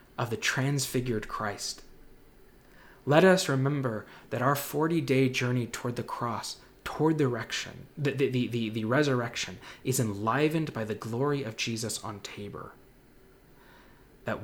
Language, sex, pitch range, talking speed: English, male, 110-145 Hz, 135 wpm